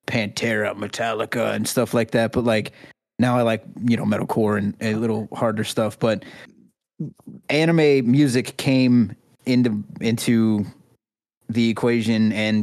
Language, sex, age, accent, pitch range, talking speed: English, male, 30-49, American, 110-125 Hz, 135 wpm